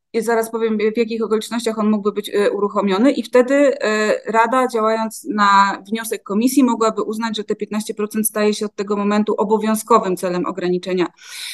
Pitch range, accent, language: 195-225 Hz, native, Polish